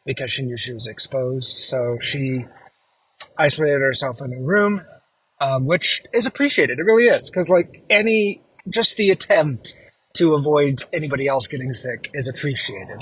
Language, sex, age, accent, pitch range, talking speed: English, male, 30-49, American, 125-150 Hz, 150 wpm